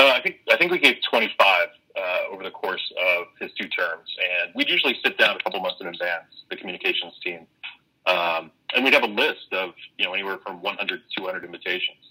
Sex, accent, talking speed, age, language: male, American, 220 wpm, 30-49, English